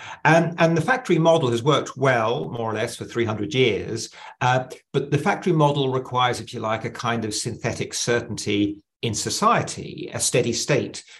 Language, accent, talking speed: English, British, 175 wpm